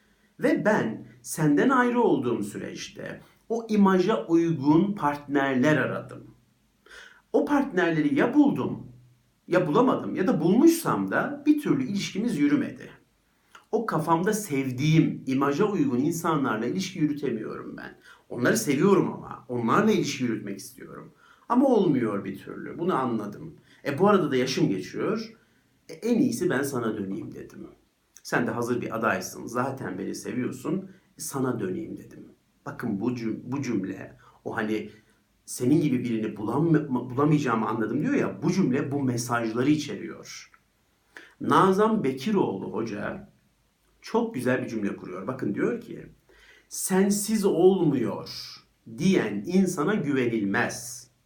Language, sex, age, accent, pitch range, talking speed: Turkish, male, 50-69, native, 125-200 Hz, 125 wpm